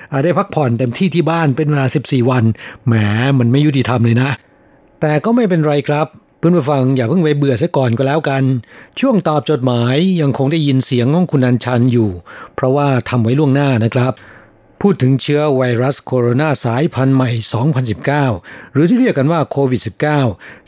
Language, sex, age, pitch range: Thai, male, 60-79, 125-150 Hz